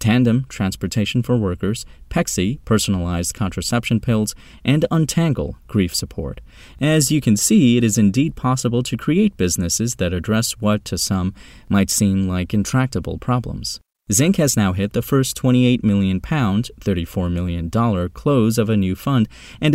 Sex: male